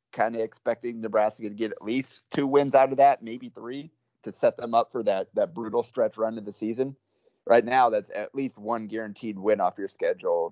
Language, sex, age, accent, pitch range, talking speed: English, male, 30-49, American, 105-125 Hz, 220 wpm